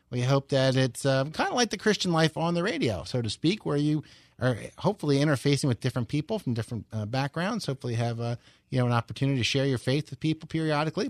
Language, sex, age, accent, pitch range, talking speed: English, male, 30-49, American, 125-160 Hz, 240 wpm